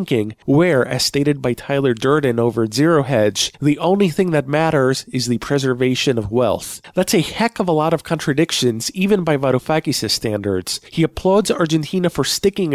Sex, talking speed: male, 170 wpm